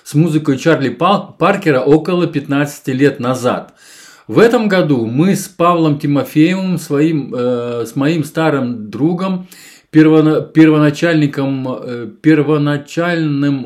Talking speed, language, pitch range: 100 wpm, Russian, 135-165 Hz